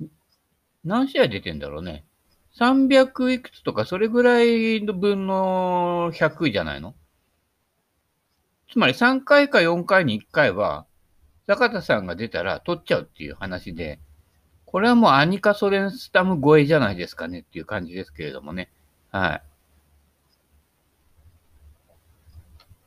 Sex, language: male, Japanese